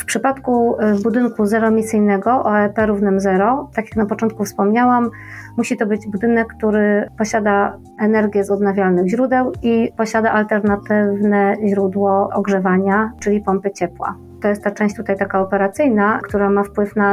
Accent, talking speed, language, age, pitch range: native, 145 wpm, Polish, 30-49, 195-220 Hz